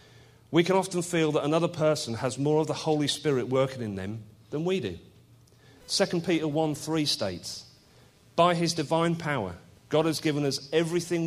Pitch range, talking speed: 115-155 Hz, 170 wpm